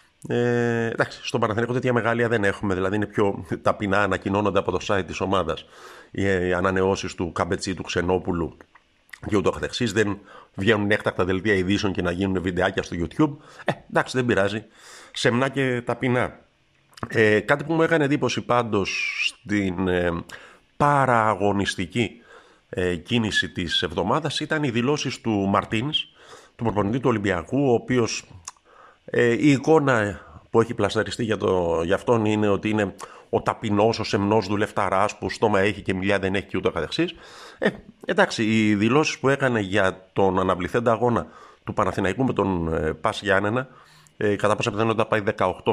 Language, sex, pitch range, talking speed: Greek, male, 95-120 Hz, 145 wpm